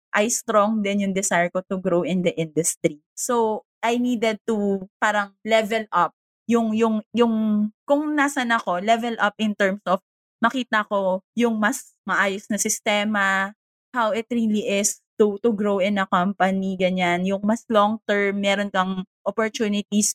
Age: 20-39